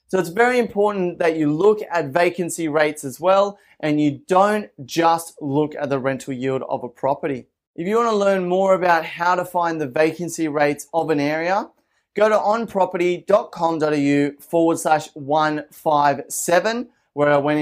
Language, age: English, 20-39